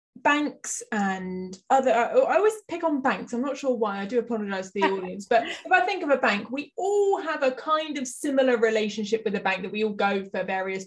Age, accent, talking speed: 20-39, British, 230 wpm